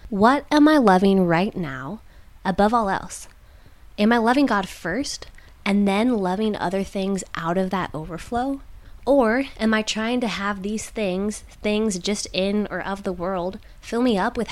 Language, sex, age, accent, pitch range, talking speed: English, female, 20-39, American, 190-240 Hz, 175 wpm